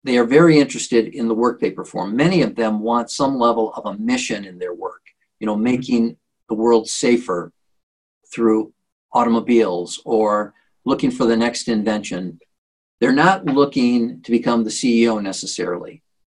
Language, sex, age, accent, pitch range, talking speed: English, male, 50-69, American, 110-150 Hz, 160 wpm